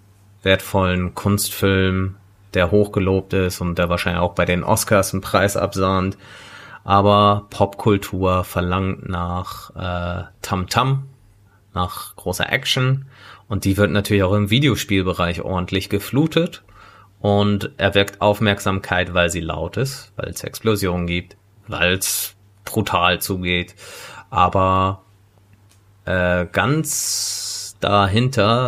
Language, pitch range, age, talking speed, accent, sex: German, 95-105 Hz, 30-49, 110 wpm, German, male